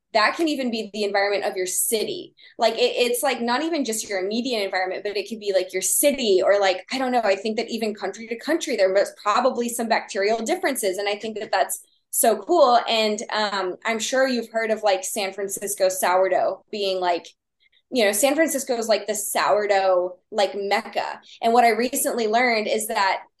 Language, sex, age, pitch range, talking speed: English, female, 20-39, 195-235 Hz, 210 wpm